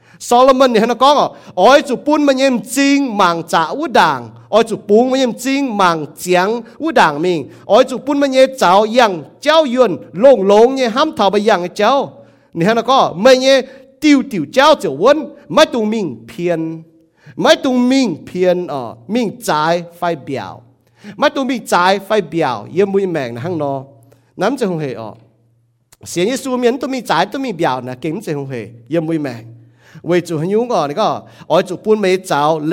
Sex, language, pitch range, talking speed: male, English, 145-225 Hz, 70 wpm